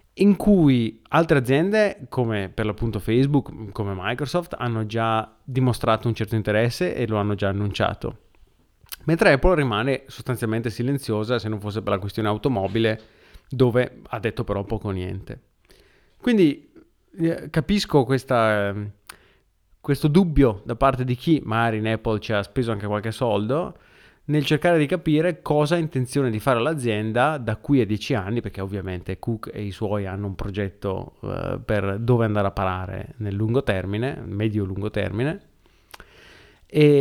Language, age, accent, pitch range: Italian, 30-49, native, 105-140 Hz